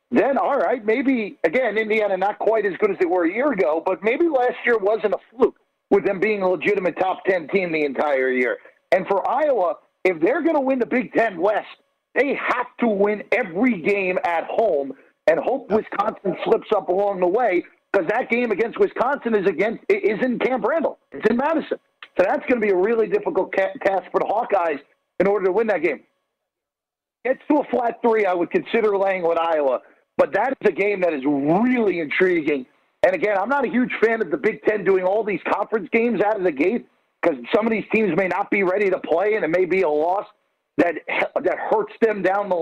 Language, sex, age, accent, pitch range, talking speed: English, male, 50-69, American, 190-255 Hz, 220 wpm